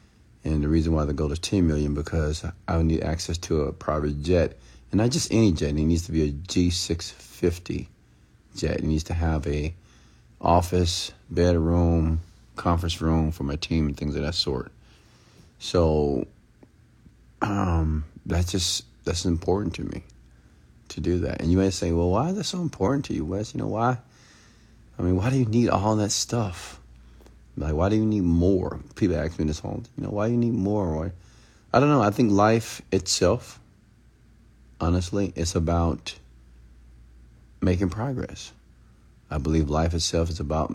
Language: English